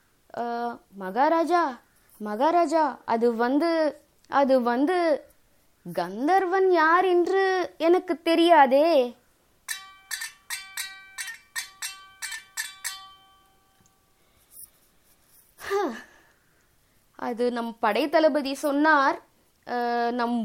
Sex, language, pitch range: female, Tamil, 255-335 Hz